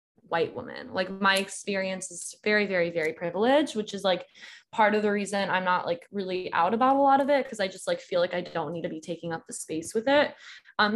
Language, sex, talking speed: English, female, 245 wpm